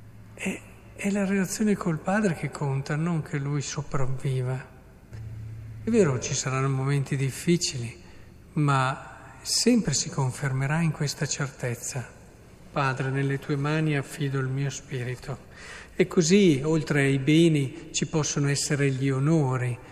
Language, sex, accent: Italian, male, native